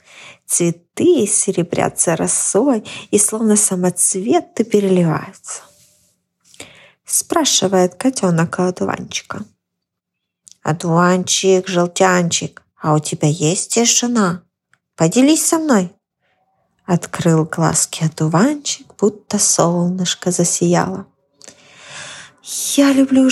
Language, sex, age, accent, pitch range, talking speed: Ukrainian, female, 20-39, native, 180-275 Hz, 70 wpm